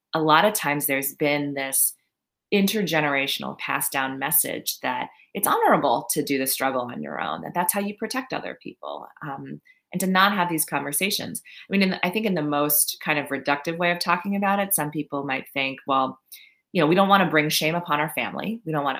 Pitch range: 140-195 Hz